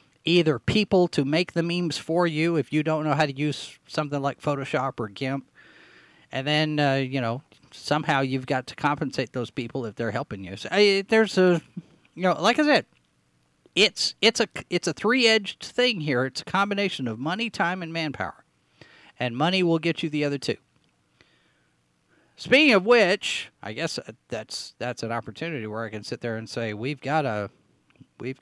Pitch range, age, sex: 115-165 Hz, 40-59, male